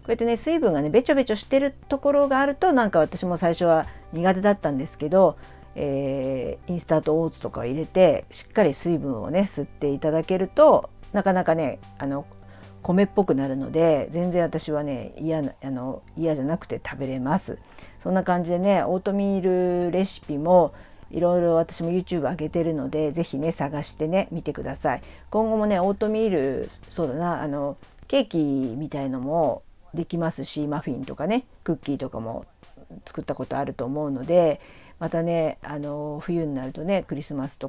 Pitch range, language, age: 140-185 Hz, Japanese, 50-69